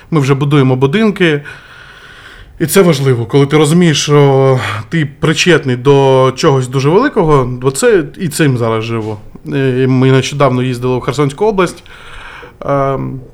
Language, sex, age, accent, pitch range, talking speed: Ukrainian, male, 20-39, native, 130-155 Hz, 130 wpm